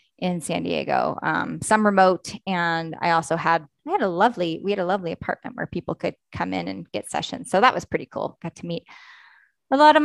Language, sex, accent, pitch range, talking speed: English, female, American, 170-245 Hz, 225 wpm